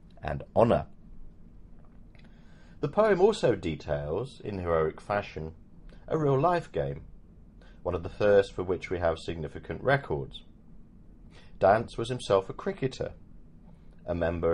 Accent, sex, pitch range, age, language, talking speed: British, male, 80-120 Hz, 40-59, English, 120 wpm